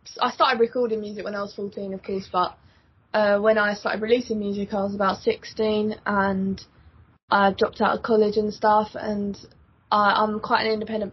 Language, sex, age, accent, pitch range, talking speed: English, female, 20-39, British, 200-225 Hz, 185 wpm